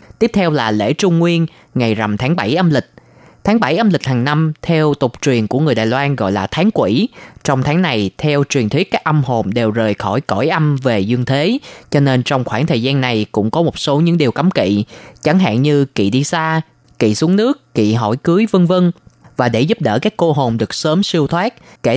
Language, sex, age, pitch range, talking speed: Vietnamese, female, 20-39, 115-165 Hz, 240 wpm